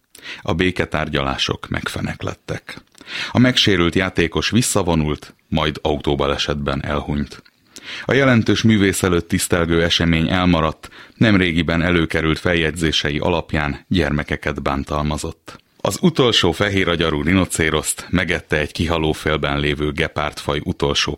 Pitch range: 75-95 Hz